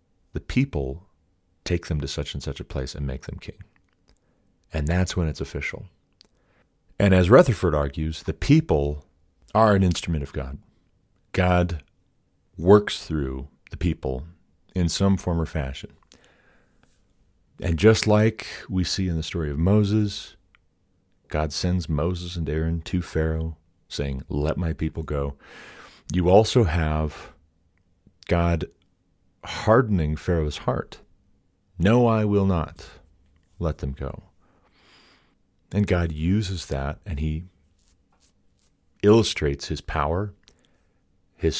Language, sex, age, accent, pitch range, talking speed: English, male, 40-59, American, 75-95 Hz, 125 wpm